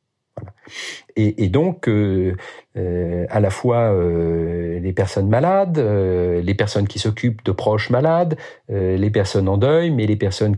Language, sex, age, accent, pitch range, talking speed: French, male, 50-69, French, 100-130 Hz, 160 wpm